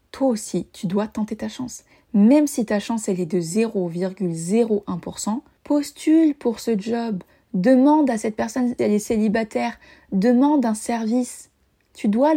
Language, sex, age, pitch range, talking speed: French, female, 20-39, 200-250 Hz, 150 wpm